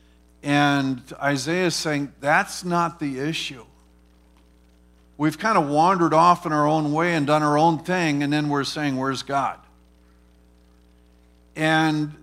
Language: English